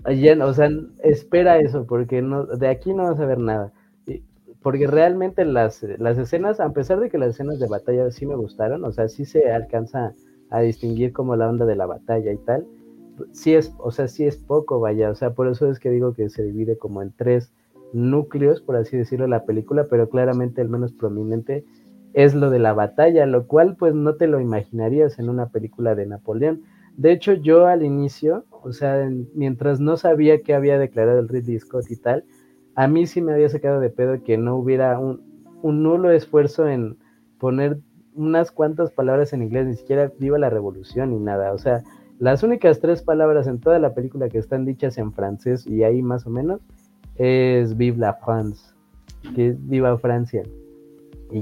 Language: Spanish